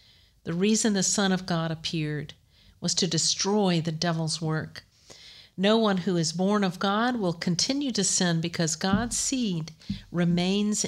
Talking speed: 155 wpm